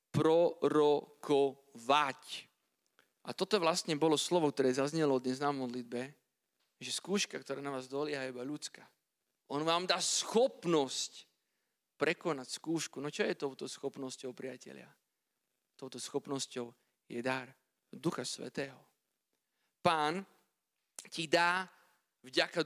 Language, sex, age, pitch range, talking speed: Slovak, male, 40-59, 135-165 Hz, 115 wpm